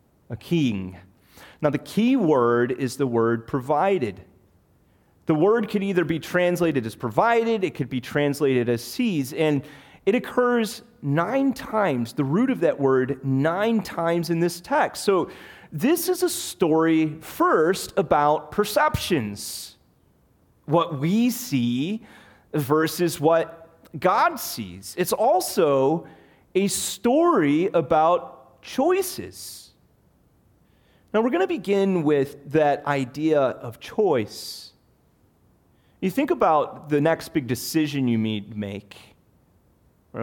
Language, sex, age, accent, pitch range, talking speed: English, male, 30-49, American, 120-185 Hz, 120 wpm